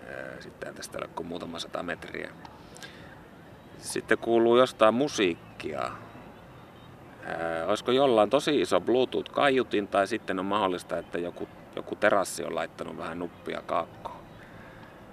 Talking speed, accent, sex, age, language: 110 wpm, native, male, 30-49, Finnish